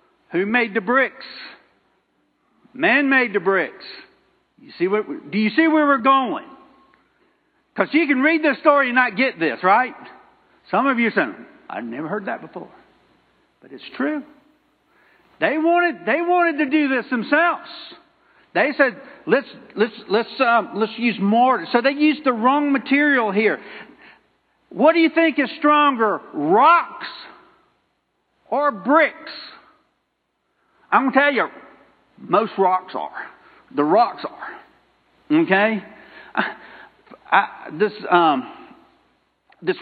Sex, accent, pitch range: male, American, 215-310 Hz